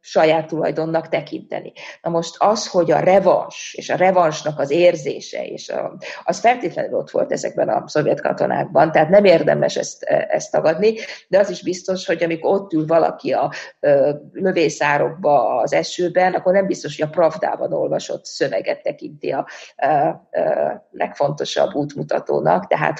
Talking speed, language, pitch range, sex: 140 wpm, Hungarian, 160-185 Hz, female